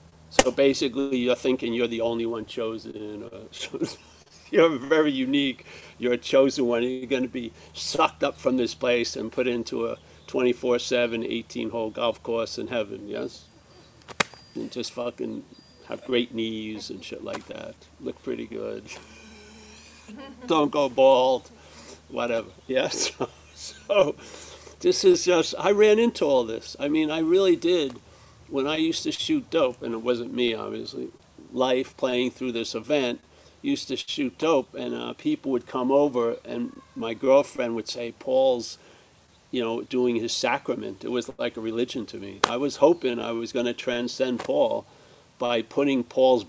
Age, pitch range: 50-69, 115-140 Hz